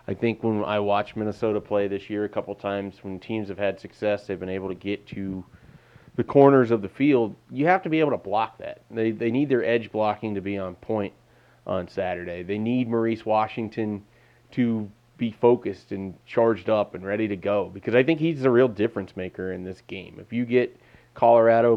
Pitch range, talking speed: 100-120 Hz, 210 wpm